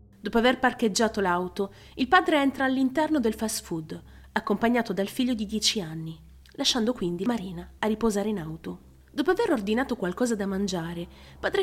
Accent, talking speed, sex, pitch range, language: native, 160 wpm, female, 175-255 Hz, Italian